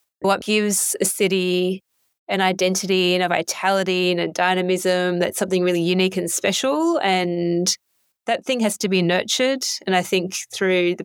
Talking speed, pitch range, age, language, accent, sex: 165 wpm, 175-200 Hz, 20-39, English, Australian, female